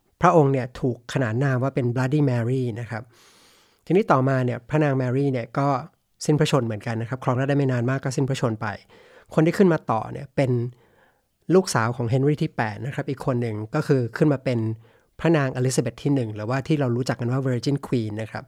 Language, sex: English, male